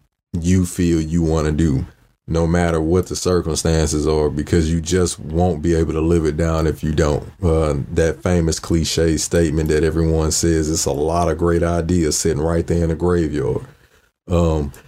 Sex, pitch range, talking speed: male, 80-90 Hz, 185 wpm